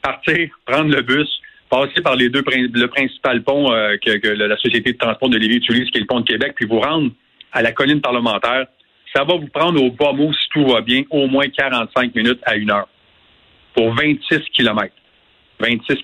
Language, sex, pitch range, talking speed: French, male, 115-150 Hz, 210 wpm